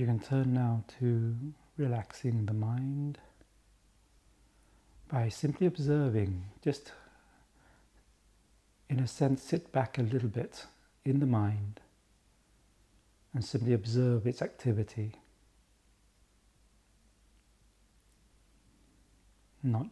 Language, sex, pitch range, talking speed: English, male, 100-125 Hz, 85 wpm